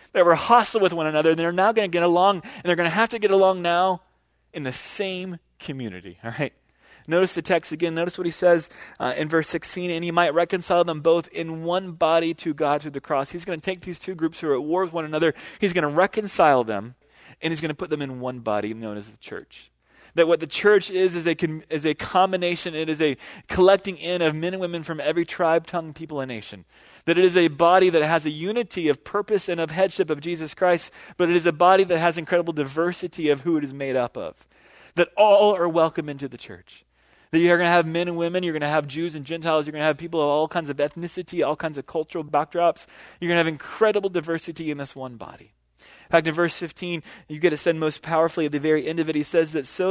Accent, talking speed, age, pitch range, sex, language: American, 255 wpm, 30-49, 150-175 Hz, male, English